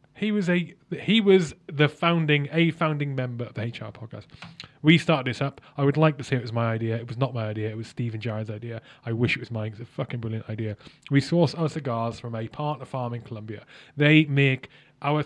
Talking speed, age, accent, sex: 235 wpm, 20-39, British, male